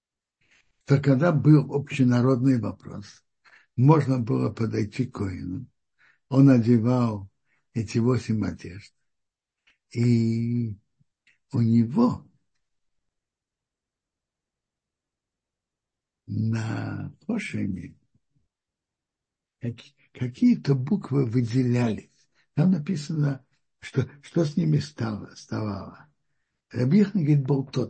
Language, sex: Russian, male